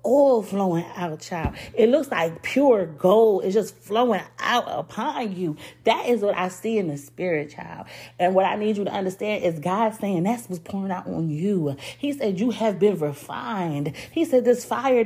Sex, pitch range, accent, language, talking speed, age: female, 165-225 Hz, American, English, 200 wpm, 30-49